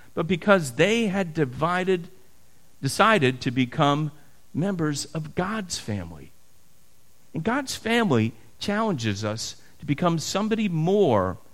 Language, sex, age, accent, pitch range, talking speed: English, male, 50-69, American, 105-160 Hz, 110 wpm